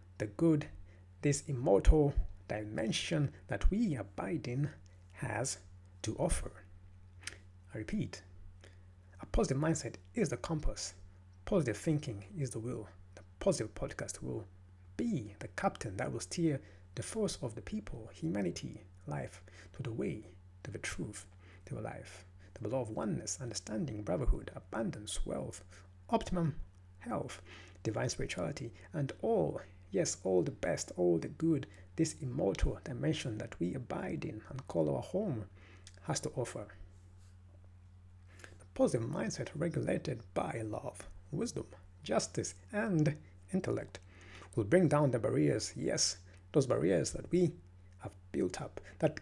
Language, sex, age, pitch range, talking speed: English, male, 60-79, 90-135 Hz, 135 wpm